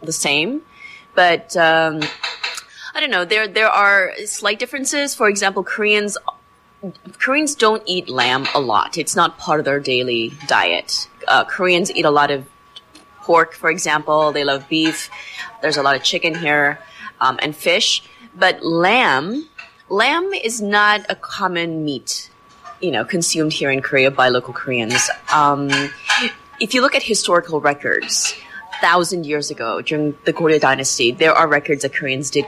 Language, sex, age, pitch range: English, female, 30-49, 150-210 Hz